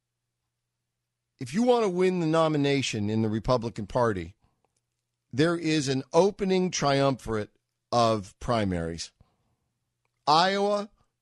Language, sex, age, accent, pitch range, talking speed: English, male, 50-69, American, 110-150 Hz, 100 wpm